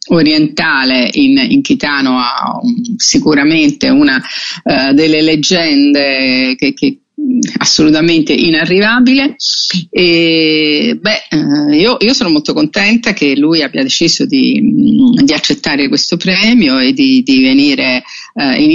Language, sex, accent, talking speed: English, female, Italian, 115 wpm